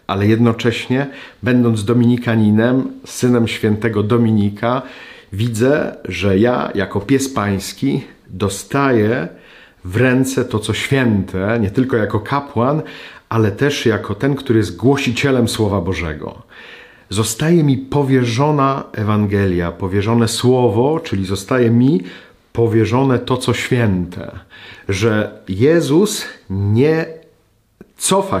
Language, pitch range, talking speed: Polish, 100-135 Hz, 105 wpm